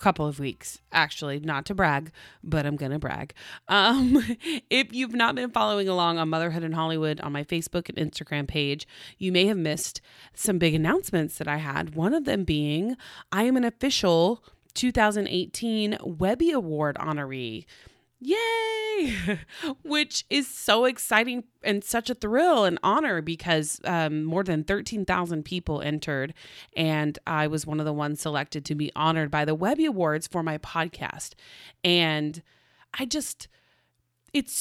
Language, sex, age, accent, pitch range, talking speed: English, female, 30-49, American, 155-215 Hz, 155 wpm